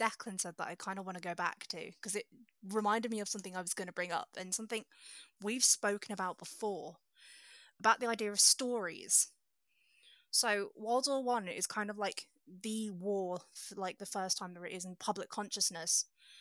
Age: 20-39